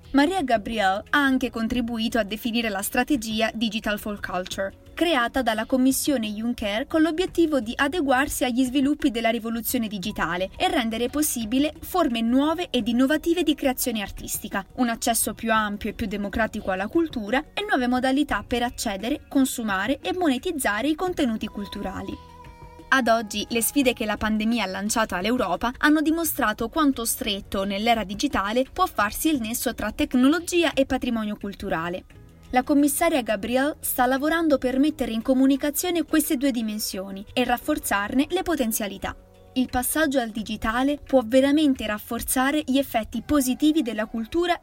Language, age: Italian, 20-39